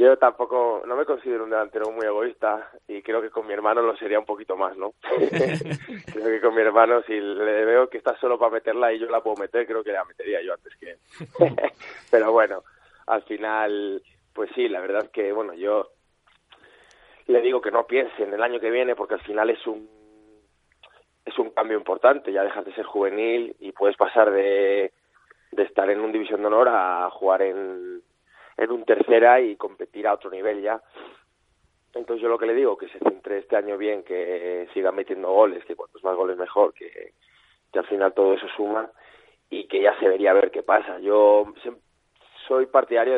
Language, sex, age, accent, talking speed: Spanish, male, 20-39, Spanish, 200 wpm